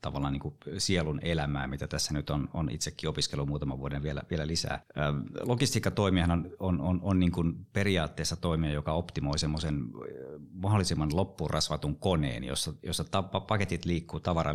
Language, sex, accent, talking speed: Finnish, male, native, 165 wpm